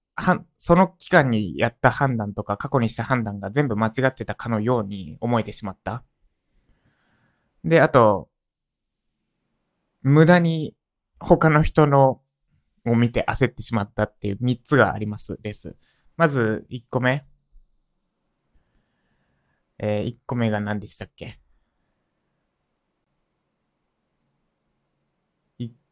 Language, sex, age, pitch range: Japanese, male, 20-39, 105-140 Hz